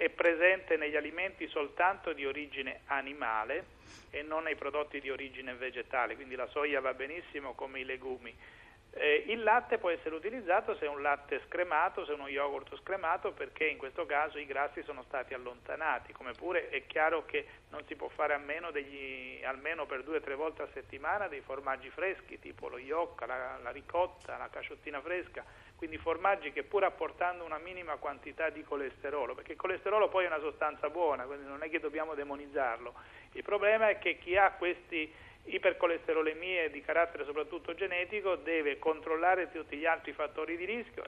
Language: Italian